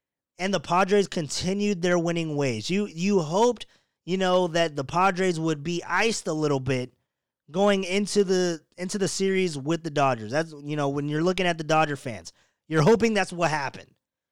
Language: English